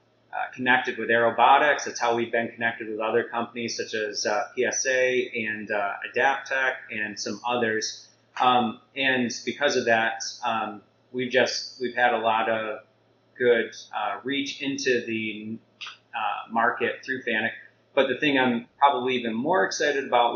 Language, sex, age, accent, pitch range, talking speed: English, male, 30-49, American, 110-125 Hz, 155 wpm